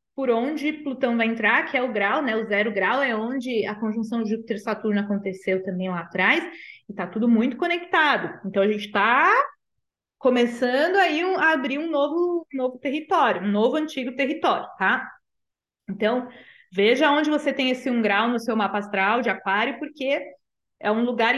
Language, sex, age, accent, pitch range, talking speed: Portuguese, female, 20-39, Brazilian, 210-310 Hz, 175 wpm